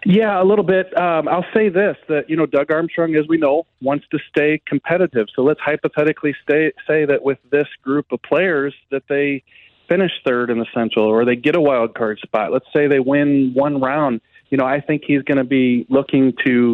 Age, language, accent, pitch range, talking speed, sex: 40-59, English, American, 125-150 Hz, 215 wpm, male